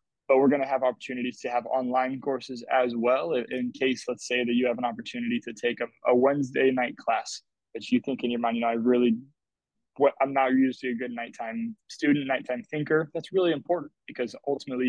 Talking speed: 220 wpm